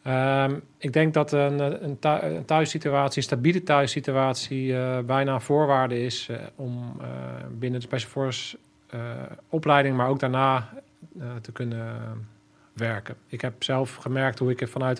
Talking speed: 155 wpm